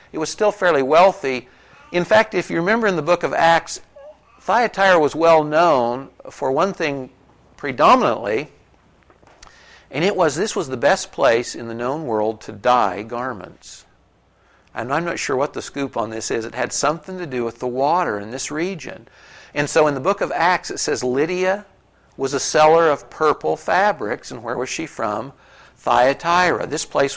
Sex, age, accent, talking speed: male, 60-79, American, 180 wpm